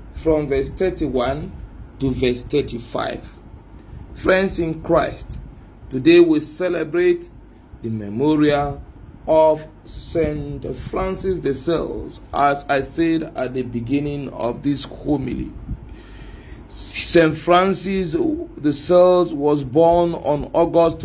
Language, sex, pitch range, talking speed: English, male, 135-170 Hz, 105 wpm